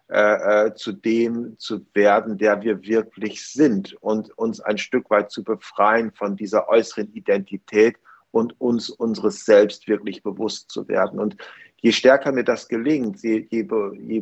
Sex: male